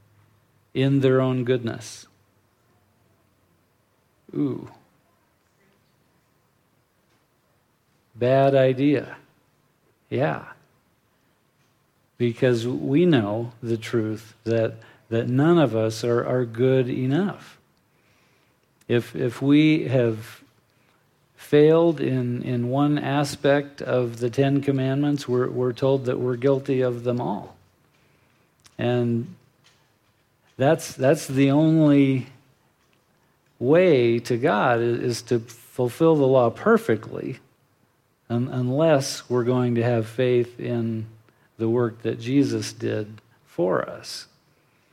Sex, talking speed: male, 95 wpm